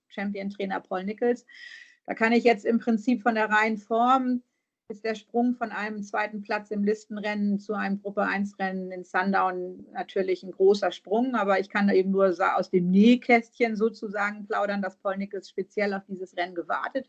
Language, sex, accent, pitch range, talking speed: German, female, German, 190-230 Hz, 175 wpm